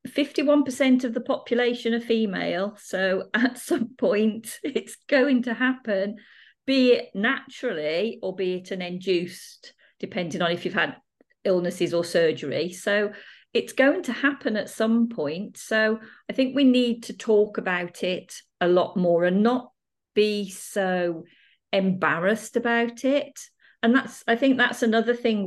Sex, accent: female, British